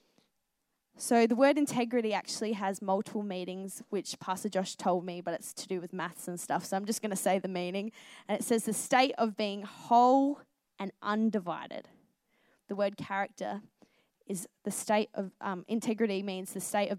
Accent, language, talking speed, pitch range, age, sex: Australian, English, 185 wpm, 190-225 Hz, 20-39, female